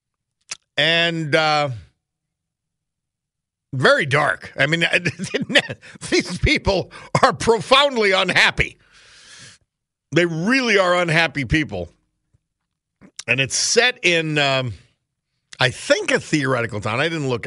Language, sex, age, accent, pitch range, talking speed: English, male, 50-69, American, 115-170 Hz, 100 wpm